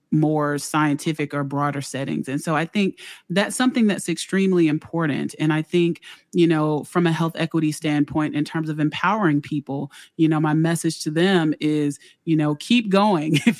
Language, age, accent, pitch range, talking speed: English, 30-49, American, 155-195 Hz, 180 wpm